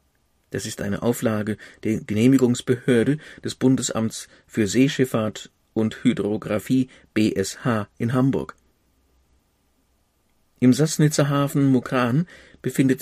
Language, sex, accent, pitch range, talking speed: German, male, German, 110-130 Hz, 90 wpm